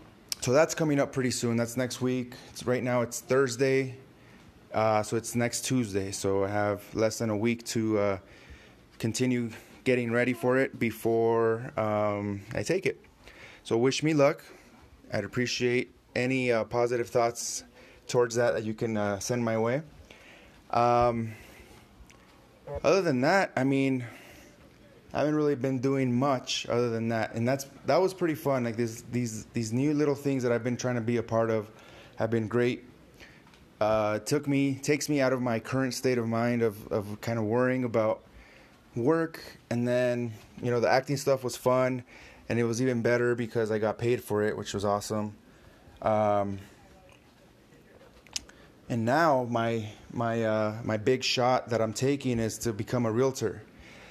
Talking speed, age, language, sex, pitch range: 170 wpm, 20-39, English, male, 110-130 Hz